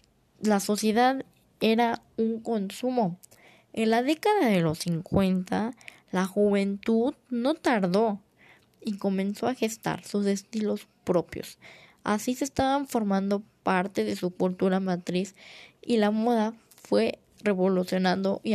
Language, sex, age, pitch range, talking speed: Spanish, female, 10-29, 185-235 Hz, 120 wpm